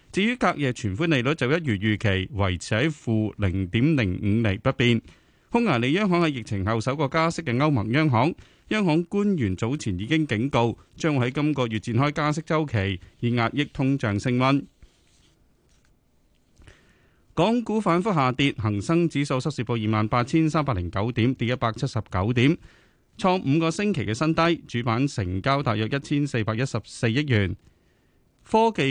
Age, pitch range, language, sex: 30-49, 110-155 Hz, Chinese, male